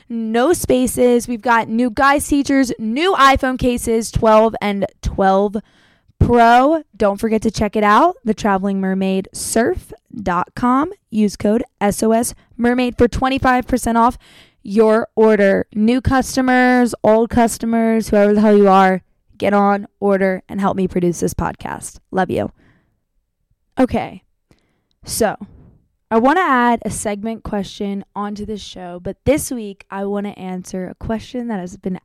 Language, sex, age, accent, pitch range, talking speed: English, female, 20-39, American, 195-240 Hz, 145 wpm